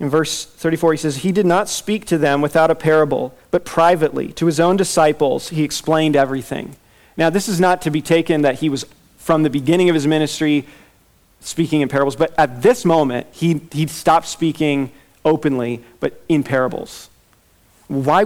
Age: 40-59